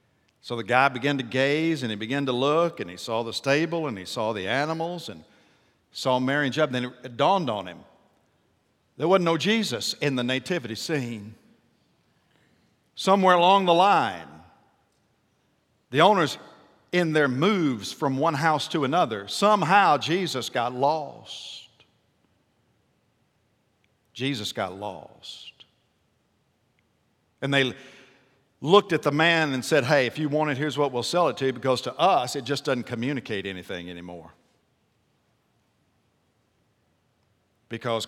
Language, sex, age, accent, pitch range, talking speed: English, male, 50-69, American, 115-155 Hz, 145 wpm